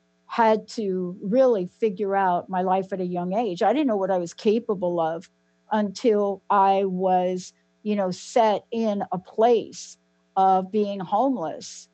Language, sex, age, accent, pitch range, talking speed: English, female, 60-79, American, 175-220 Hz, 155 wpm